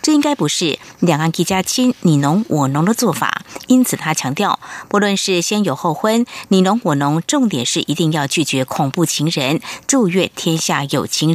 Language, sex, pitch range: Chinese, female, 160-225 Hz